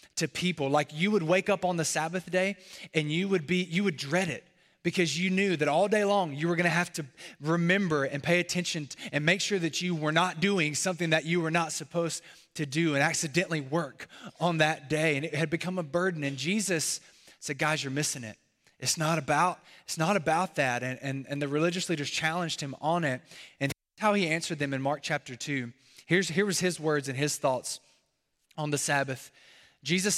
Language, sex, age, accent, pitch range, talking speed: English, male, 20-39, American, 140-180 Hz, 220 wpm